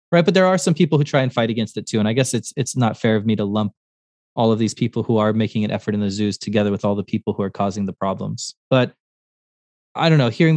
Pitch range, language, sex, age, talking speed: 105-130 Hz, English, male, 20-39, 290 wpm